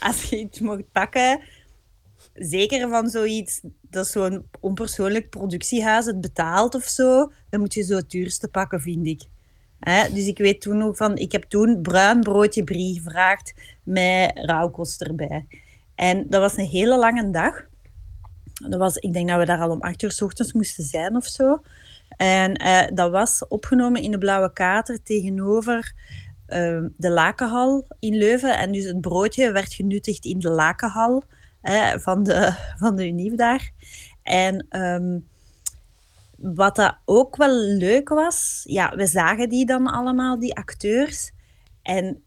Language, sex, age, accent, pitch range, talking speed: Dutch, female, 30-49, Dutch, 180-225 Hz, 160 wpm